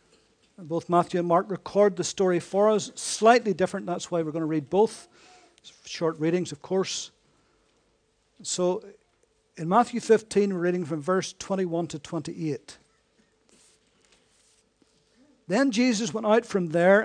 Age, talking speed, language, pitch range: 50-69, 140 wpm, English, 170-220 Hz